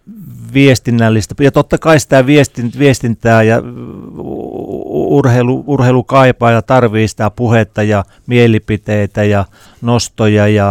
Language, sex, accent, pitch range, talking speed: Finnish, male, native, 105-125 Hz, 105 wpm